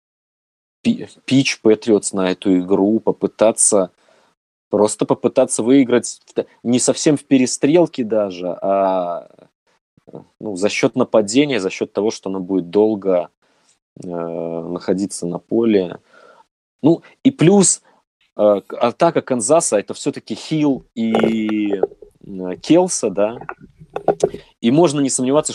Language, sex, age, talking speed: Russian, male, 20-39, 110 wpm